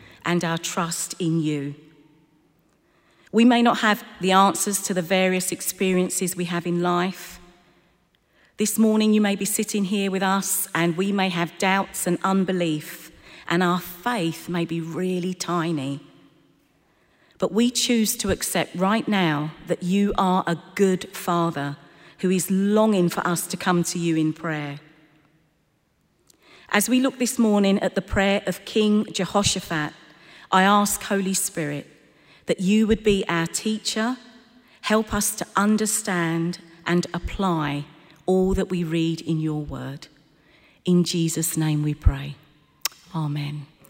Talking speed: 145 wpm